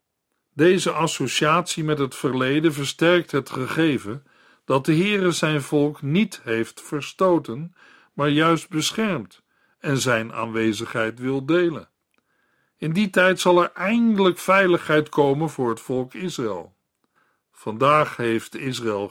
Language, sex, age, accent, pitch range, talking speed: Dutch, male, 50-69, Dutch, 130-175 Hz, 120 wpm